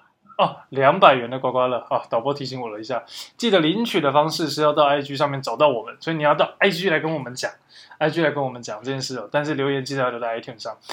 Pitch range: 130-155 Hz